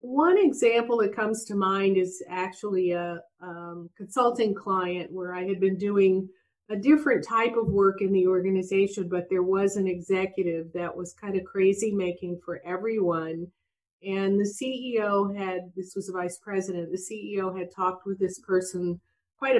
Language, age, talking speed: English, 50-69, 170 wpm